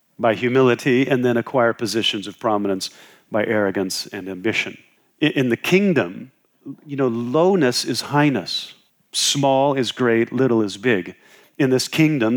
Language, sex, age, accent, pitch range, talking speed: English, male, 40-59, American, 105-125 Hz, 140 wpm